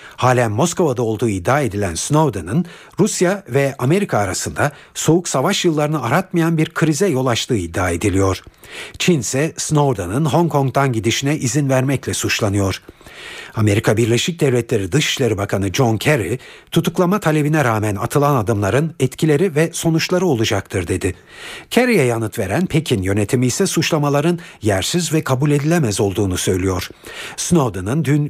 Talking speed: 130 wpm